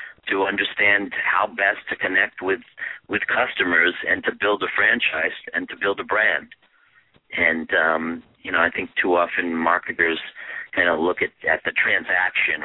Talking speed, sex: 165 wpm, male